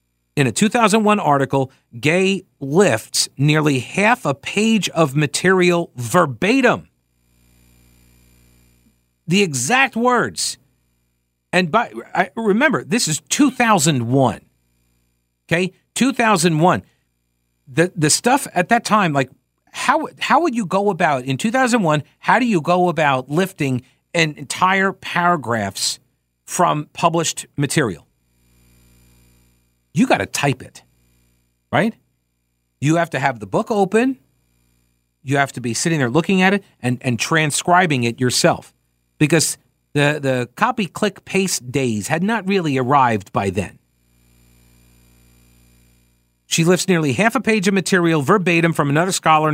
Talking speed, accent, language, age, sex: 125 wpm, American, English, 50-69, male